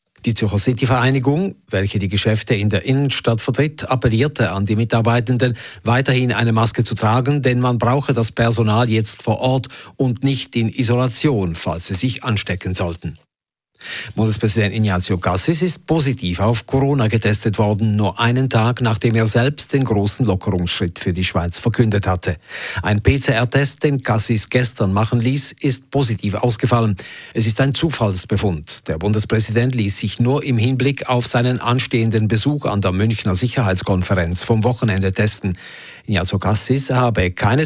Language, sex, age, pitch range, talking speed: German, male, 50-69, 100-125 Hz, 150 wpm